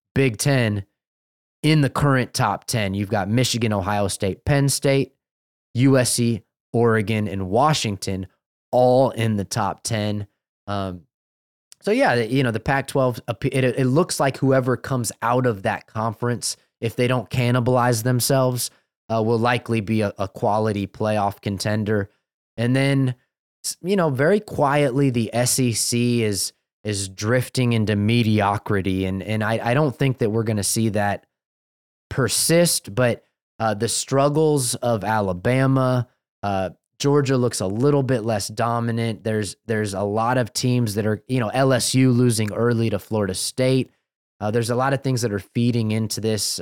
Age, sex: 20-39, male